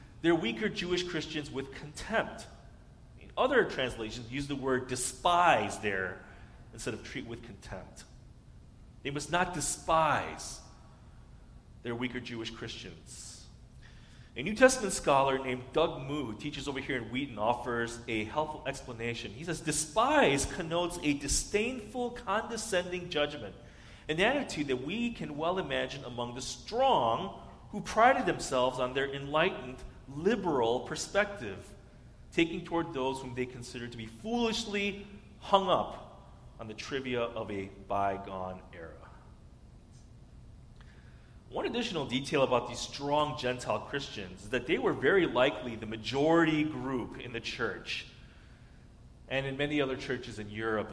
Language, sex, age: English, male, 40-59